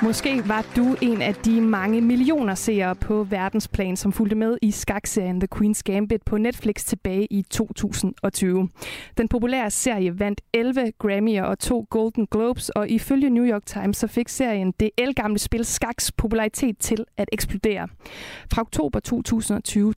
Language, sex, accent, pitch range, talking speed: Danish, female, native, 200-235 Hz, 160 wpm